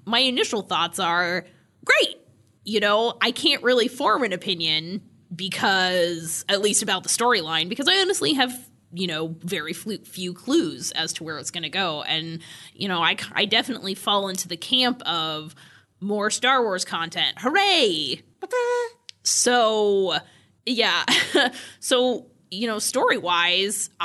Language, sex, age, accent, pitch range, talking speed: English, female, 20-39, American, 165-240 Hz, 140 wpm